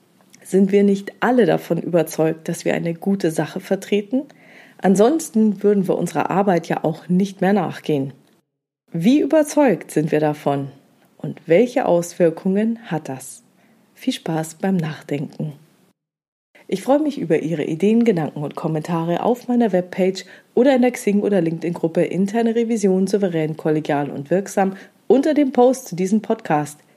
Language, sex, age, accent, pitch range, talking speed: German, female, 40-59, German, 160-230 Hz, 145 wpm